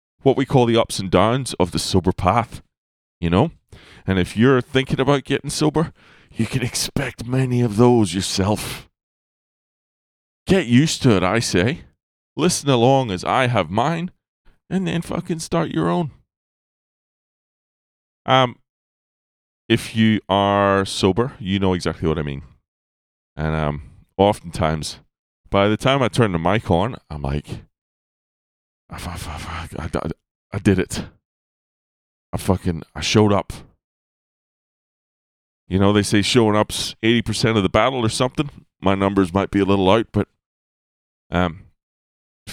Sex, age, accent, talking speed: male, 30-49, American, 145 wpm